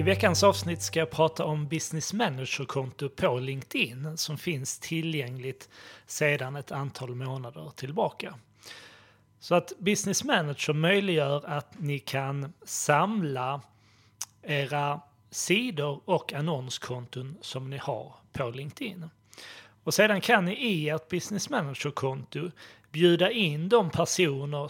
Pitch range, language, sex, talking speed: 135-165 Hz, Swedish, male, 120 wpm